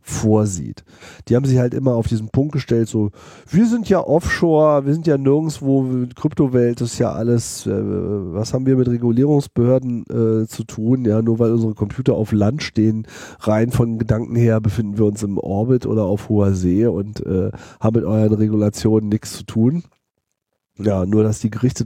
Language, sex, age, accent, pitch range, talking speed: German, male, 40-59, German, 100-120 Hz, 185 wpm